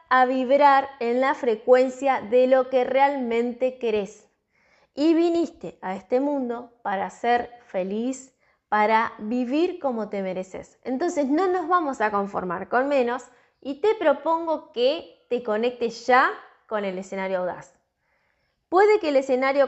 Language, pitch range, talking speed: Spanish, 210-275 Hz, 140 wpm